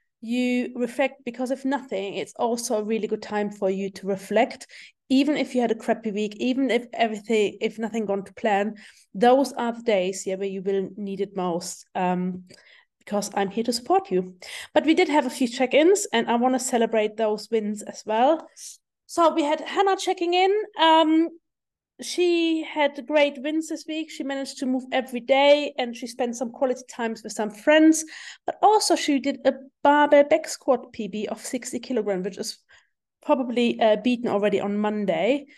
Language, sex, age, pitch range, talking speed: English, female, 30-49, 220-285 Hz, 185 wpm